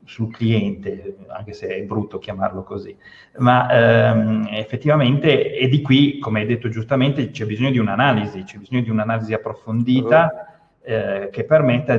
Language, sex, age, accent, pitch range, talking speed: Italian, male, 30-49, native, 110-140 Hz, 150 wpm